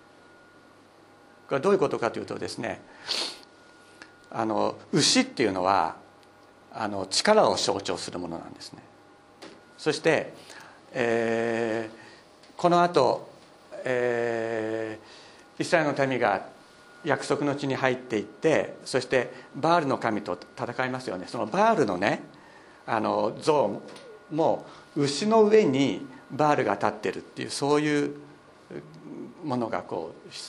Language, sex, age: Japanese, male, 50-69